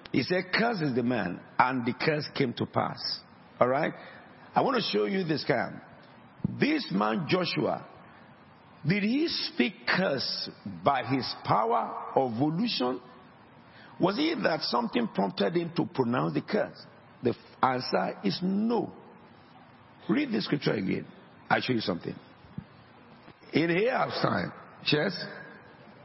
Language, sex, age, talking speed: English, male, 50-69, 135 wpm